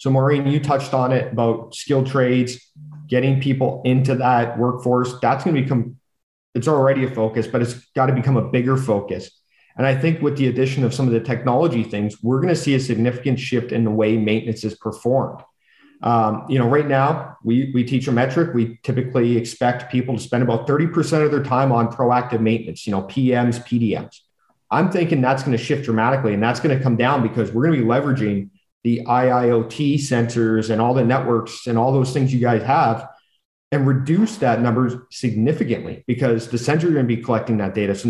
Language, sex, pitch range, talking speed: English, male, 115-135 Hz, 205 wpm